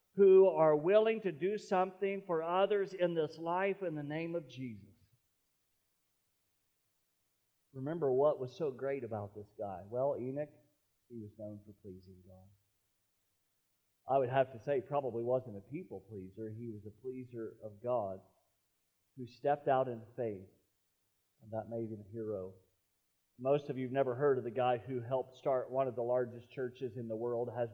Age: 40-59